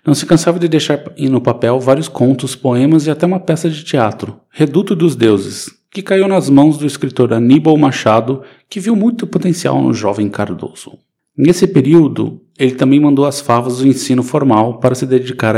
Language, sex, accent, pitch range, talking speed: Portuguese, male, Brazilian, 125-160 Hz, 180 wpm